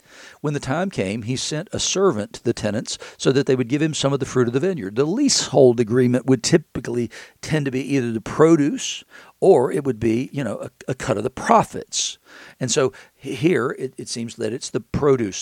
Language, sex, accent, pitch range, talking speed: English, male, American, 115-140 Hz, 220 wpm